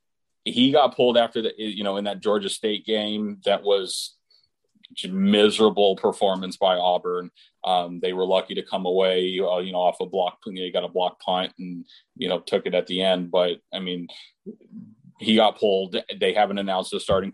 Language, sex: English, male